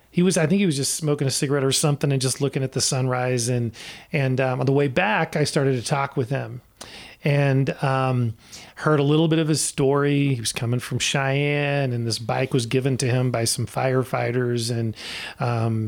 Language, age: English, 40-59